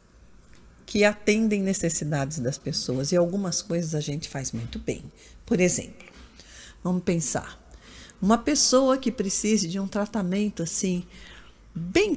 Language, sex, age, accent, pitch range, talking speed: Portuguese, female, 50-69, Brazilian, 145-210 Hz, 130 wpm